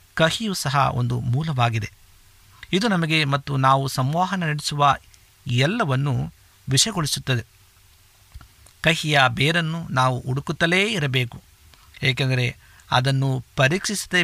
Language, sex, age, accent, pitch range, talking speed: Kannada, male, 50-69, native, 115-145 Hz, 85 wpm